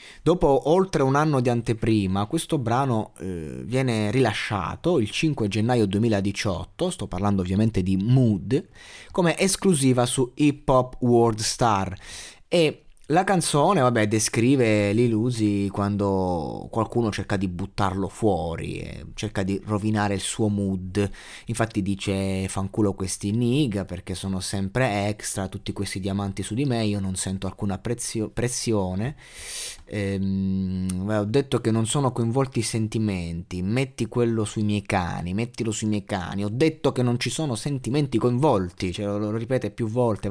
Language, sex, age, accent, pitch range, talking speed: Italian, male, 20-39, native, 100-130 Hz, 145 wpm